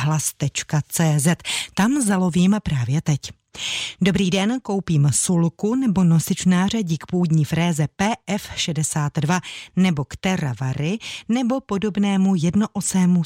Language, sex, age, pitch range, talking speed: Czech, female, 30-49, 145-195 Hz, 95 wpm